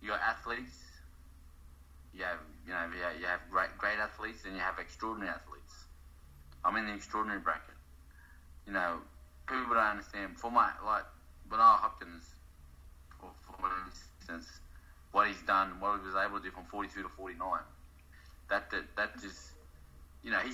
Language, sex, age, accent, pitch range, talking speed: English, male, 20-39, Australian, 70-95 Hz, 160 wpm